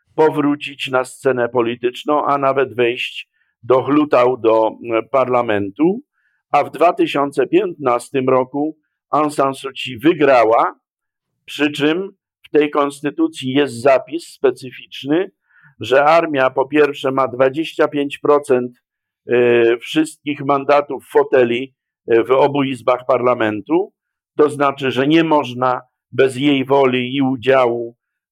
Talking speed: 110 wpm